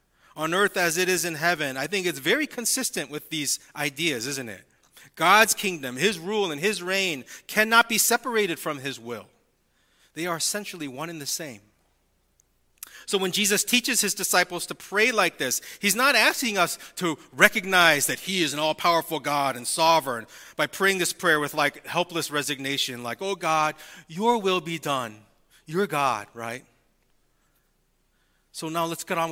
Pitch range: 135-190 Hz